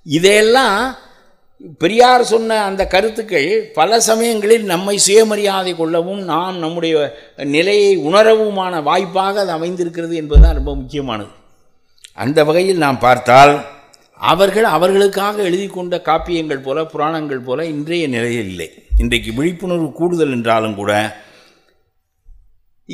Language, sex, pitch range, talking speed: Tamil, male, 105-175 Hz, 105 wpm